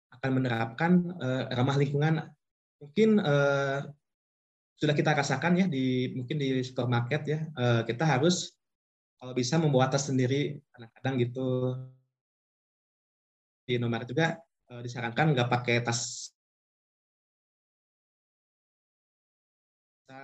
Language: Indonesian